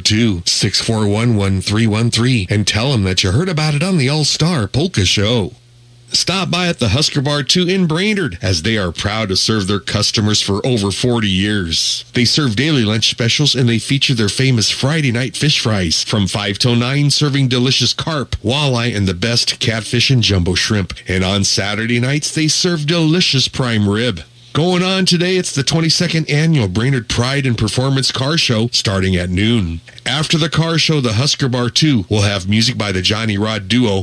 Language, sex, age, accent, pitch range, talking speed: English, male, 40-59, American, 105-145 Hz, 200 wpm